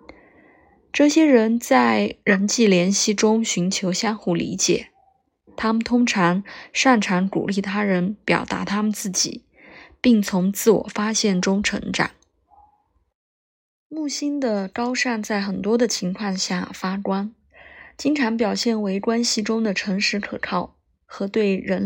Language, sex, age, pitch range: Chinese, female, 20-39, 195-240 Hz